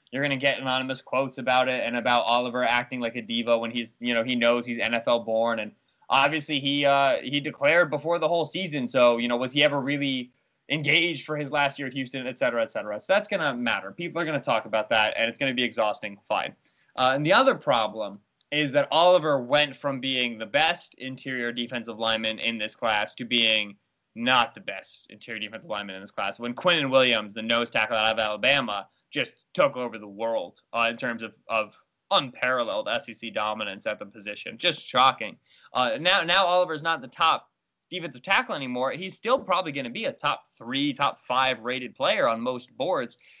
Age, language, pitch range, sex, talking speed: 20-39, English, 120-150 Hz, male, 210 wpm